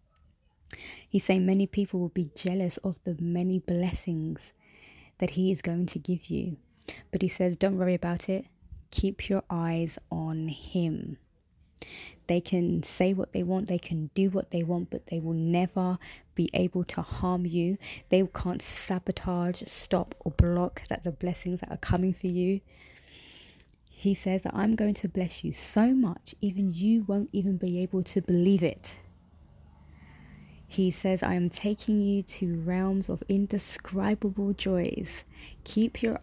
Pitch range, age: 160-190 Hz, 20-39